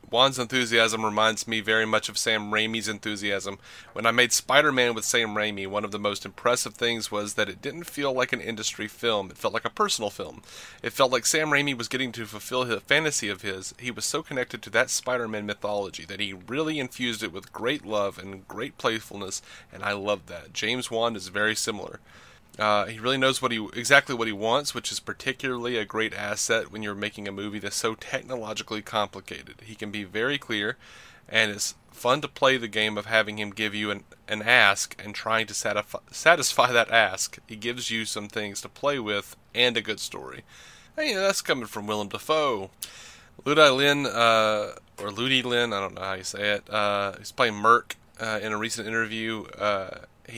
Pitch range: 105-120 Hz